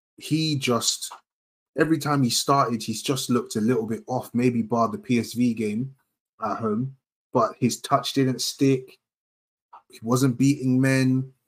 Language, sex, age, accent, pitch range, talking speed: English, male, 20-39, British, 100-125 Hz, 150 wpm